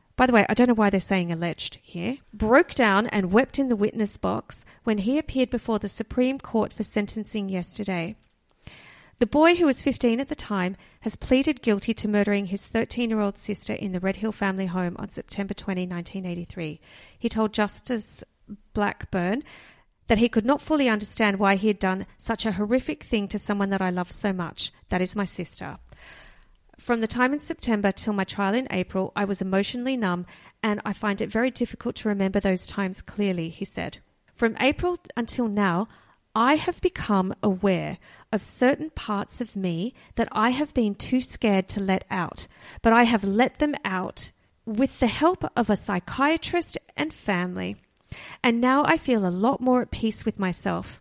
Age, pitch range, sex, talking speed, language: 40-59, 195-245 Hz, female, 185 wpm, English